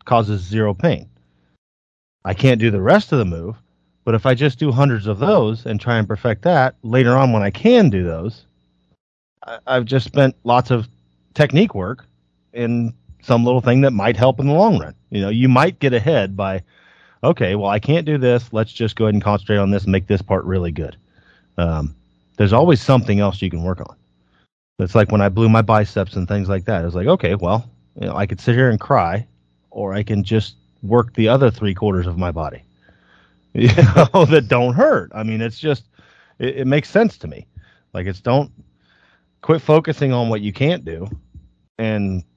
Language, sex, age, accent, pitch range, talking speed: English, male, 30-49, American, 90-125 Hz, 205 wpm